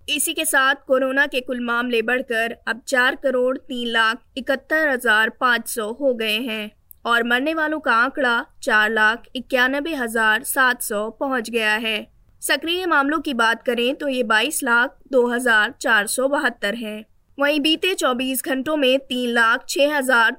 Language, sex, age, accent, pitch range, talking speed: Hindi, female, 20-39, native, 235-280 Hz, 170 wpm